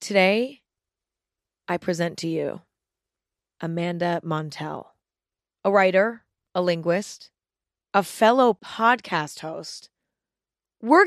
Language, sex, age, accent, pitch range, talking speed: English, female, 30-49, American, 175-230 Hz, 85 wpm